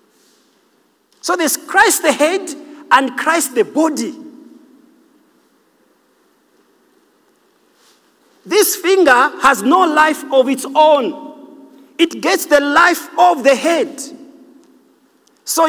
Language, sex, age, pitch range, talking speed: English, male, 50-69, 275-350 Hz, 95 wpm